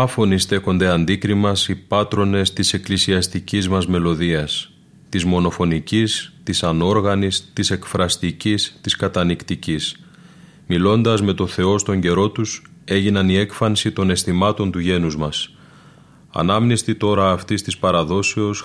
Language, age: Greek, 30-49